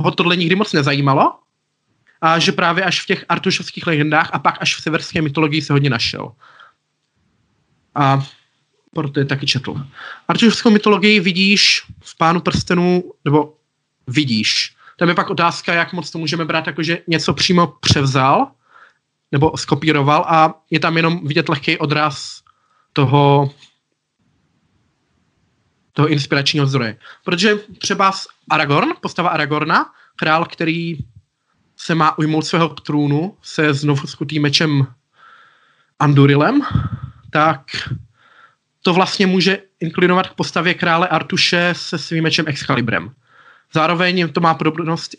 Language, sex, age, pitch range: Czech, male, 20-39, 140-175 Hz